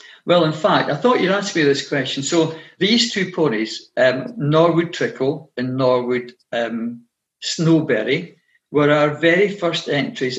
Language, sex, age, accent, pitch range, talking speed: English, male, 50-69, British, 130-170 Hz, 150 wpm